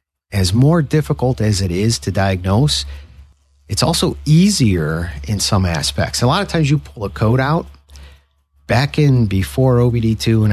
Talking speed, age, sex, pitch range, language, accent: 165 wpm, 50-69, male, 90-125 Hz, English, American